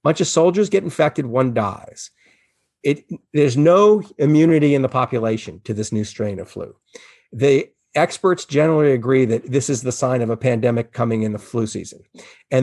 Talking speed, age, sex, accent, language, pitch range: 180 wpm, 40-59, male, American, English, 120-155 Hz